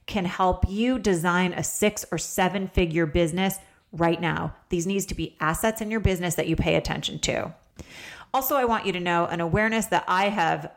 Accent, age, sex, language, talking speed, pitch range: American, 30-49, female, English, 200 wpm, 170-210 Hz